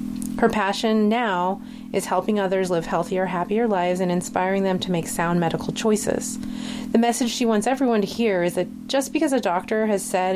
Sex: female